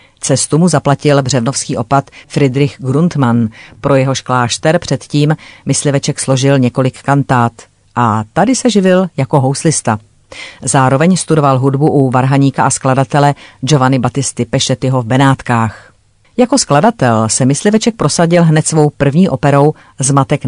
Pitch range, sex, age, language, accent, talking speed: 125-150 Hz, female, 40-59, Czech, native, 130 wpm